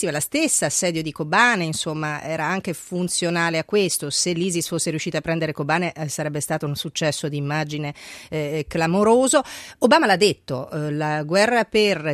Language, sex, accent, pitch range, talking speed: Italian, female, native, 150-190 Hz, 170 wpm